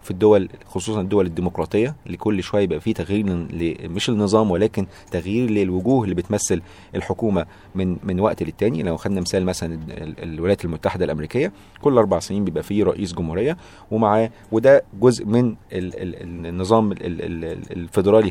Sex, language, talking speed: male, Arabic, 150 wpm